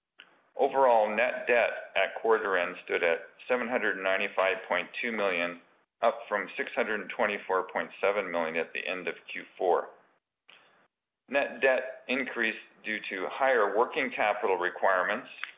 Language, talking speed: English, 110 wpm